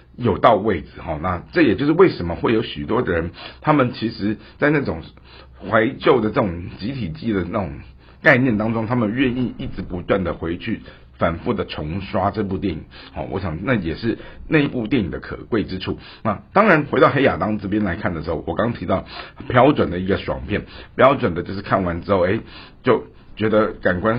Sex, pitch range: male, 90-110 Hz